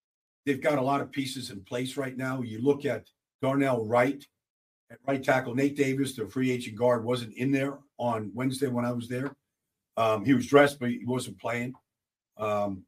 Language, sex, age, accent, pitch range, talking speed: English, male, 50-69, American, 115-140 Hz, 195 wpm